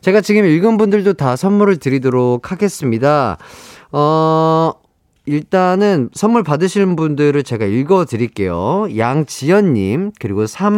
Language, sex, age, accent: Korean, male, 40-59, native